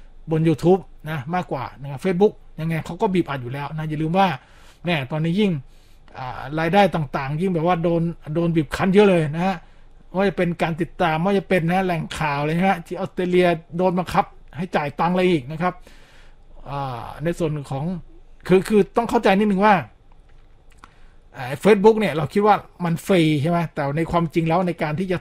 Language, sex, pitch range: Thai, male, 150-185 Hz